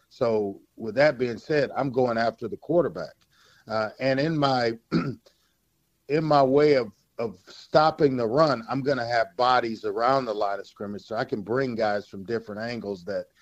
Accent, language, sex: American, English, male